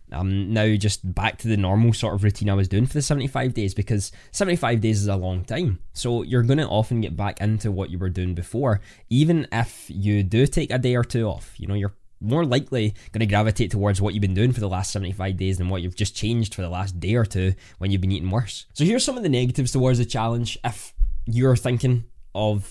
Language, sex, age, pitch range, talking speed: English, male, 10-29, 100-120 Hz, 250 wpm